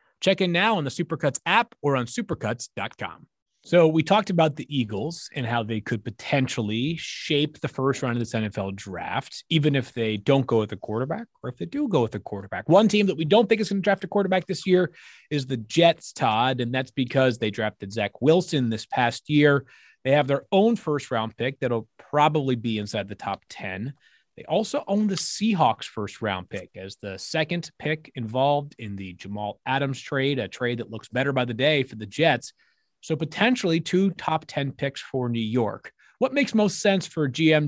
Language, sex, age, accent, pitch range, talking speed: English, male, 30-49, American, 120-175 Hz, 210 wpm